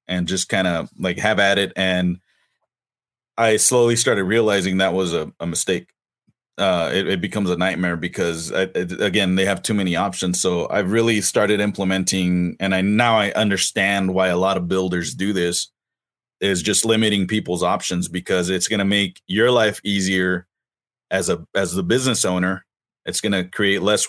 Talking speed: 180 wpm